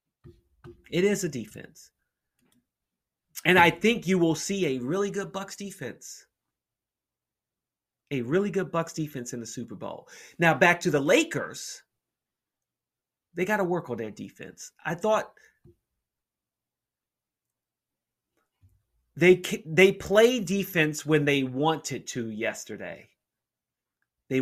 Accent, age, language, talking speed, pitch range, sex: American, 30-49, English, 120 wpm, 140-185 Hz, male